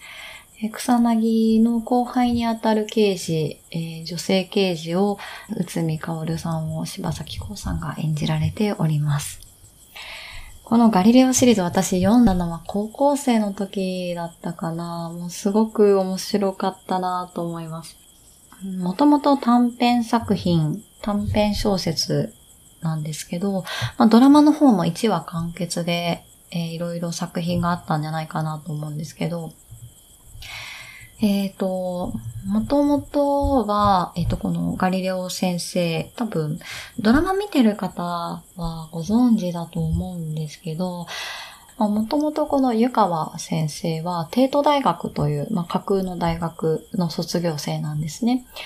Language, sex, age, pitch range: Japanese, female, 20-39, 165-225 Hz